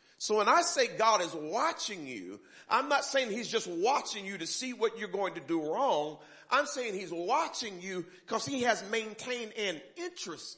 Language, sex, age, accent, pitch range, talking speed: English, male, 40-59, American, 185-275 Hz, 195 wpm